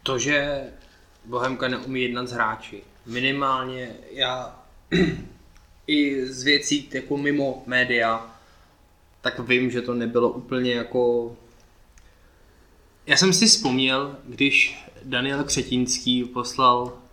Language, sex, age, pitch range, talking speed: Czech, male, 20-39, 110-130 Hz, 105 wpm